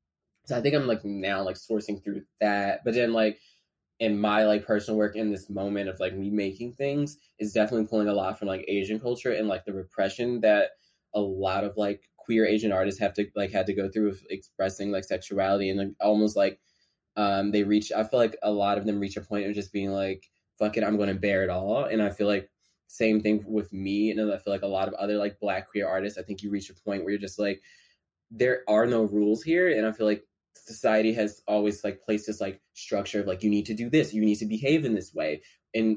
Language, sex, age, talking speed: English, male, 10-29, 245 wpm